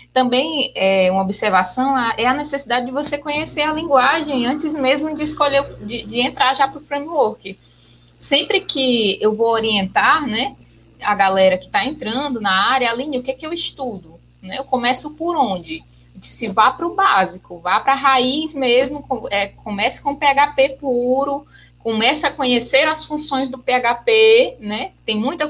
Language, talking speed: Portuguese, 170 wpm